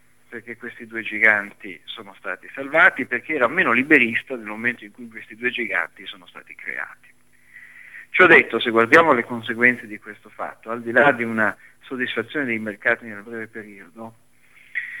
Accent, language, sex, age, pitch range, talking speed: native, Italian, male, 50-69, 110-125 Hz, 165 wpm